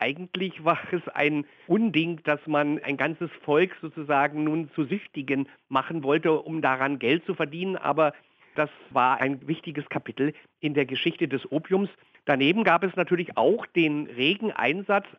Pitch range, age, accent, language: 150-195 Hz, 50-69, German, German